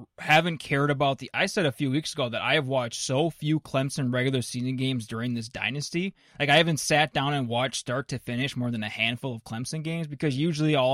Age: 20-39